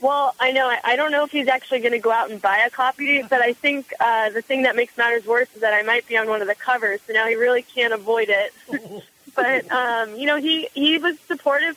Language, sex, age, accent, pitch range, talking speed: English, female, 20-39, American, 225-265 Hz, 270 wpm